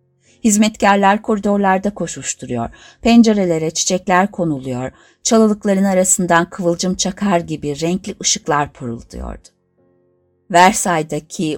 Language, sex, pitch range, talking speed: Turkish, female, 140-195 Hz, 80 wpm